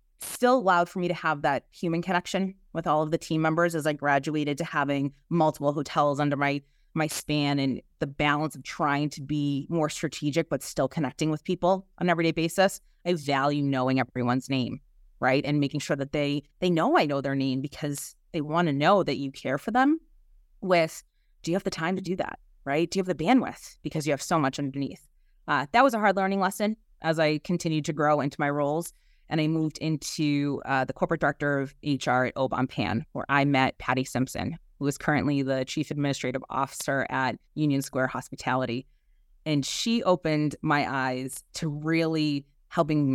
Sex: female